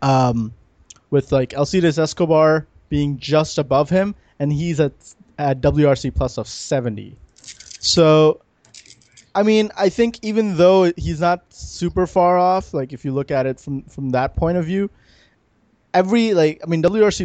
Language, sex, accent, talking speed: English, male, American, 160 wpm